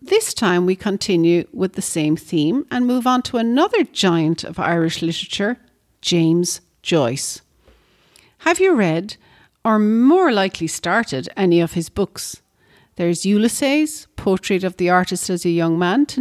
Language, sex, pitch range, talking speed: English, female, 170-240 Hz, 150 wpm